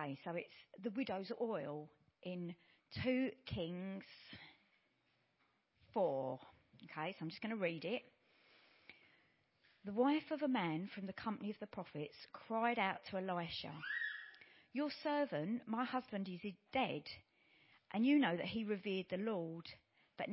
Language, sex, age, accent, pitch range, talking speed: English, female, 40-59, British, 170-225 Hz, 140 wpm